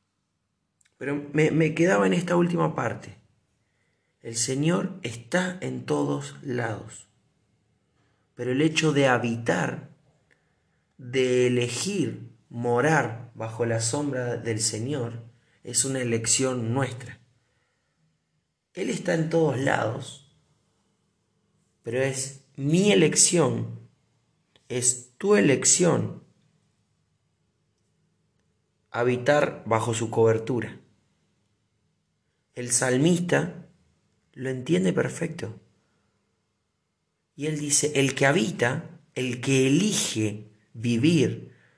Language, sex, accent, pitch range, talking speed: Spanish, male, Argentinian, 115-145 Hz, 90 wpm